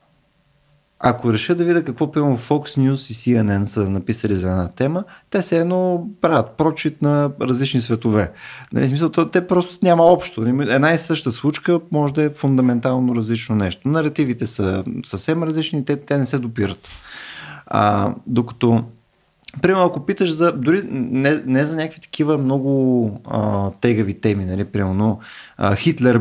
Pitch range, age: 115-160 Hz, 30-49